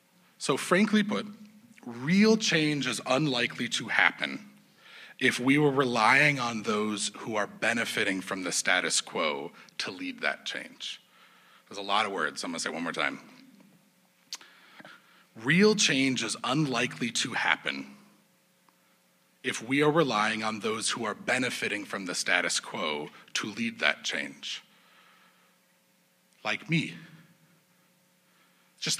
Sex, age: male, 40-59